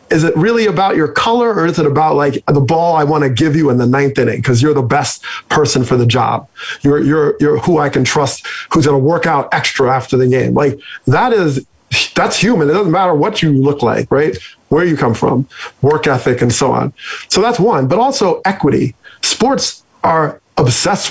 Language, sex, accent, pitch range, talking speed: English, male, American, 140-170 Hz, 220 wpm